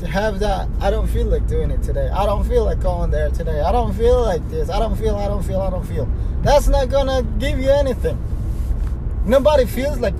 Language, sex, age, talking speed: English, male, 20-39, 235 wpm